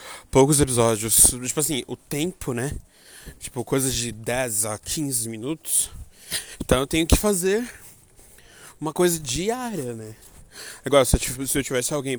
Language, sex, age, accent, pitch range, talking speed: Portuguese, male, 20-39, Brazilian, 115-150 Hz, 140 wpm